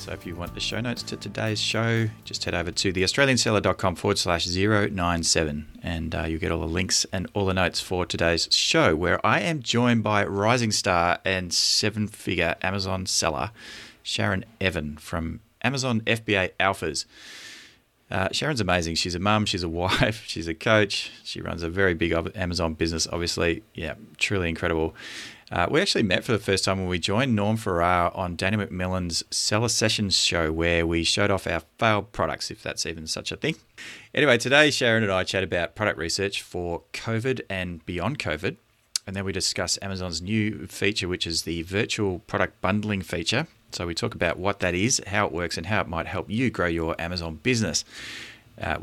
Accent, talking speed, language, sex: Australian, 190 wpm, English, male